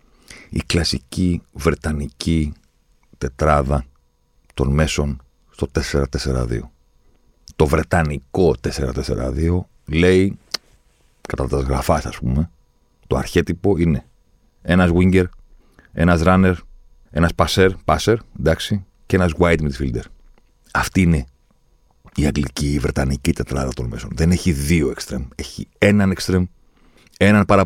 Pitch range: 70-95 Hz